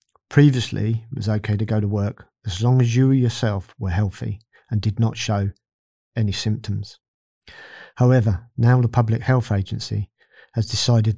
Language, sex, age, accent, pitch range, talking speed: English, male, 40-59, British, 100-120 Hz, 160 wpm